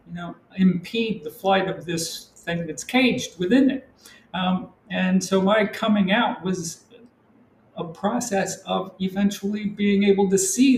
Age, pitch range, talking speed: 50-69, 165-205 Hz, 150 wpm